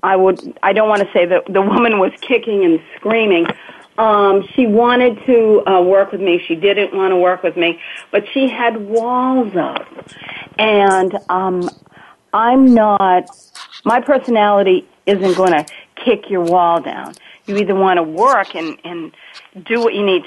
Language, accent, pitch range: English, American, 190-240 Hz